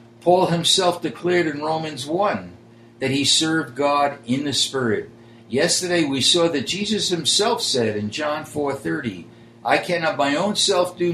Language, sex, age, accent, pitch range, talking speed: English, male, 60-79, American, 115-165 Hz, 155 wpm